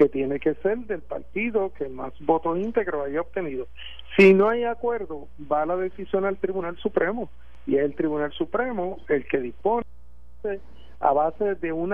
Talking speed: 170 wpm